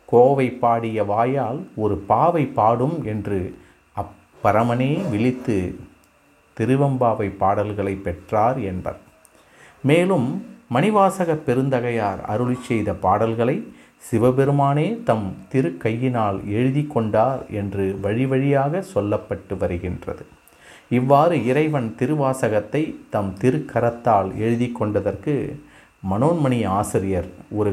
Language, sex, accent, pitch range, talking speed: Tamil, male, native, 100-130 Hz, 85 wpm